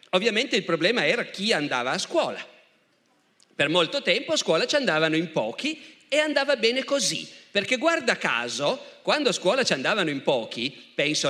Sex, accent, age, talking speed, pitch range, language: male, native, 40-59, 170 wpm, 160-240 Hz, Italian